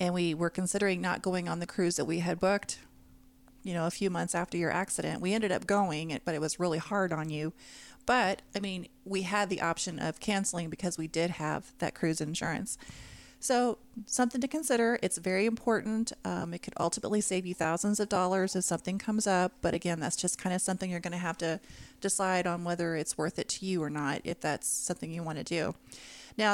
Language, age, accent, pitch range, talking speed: English, 30-49, American, 170-210 Hz, 215 wpm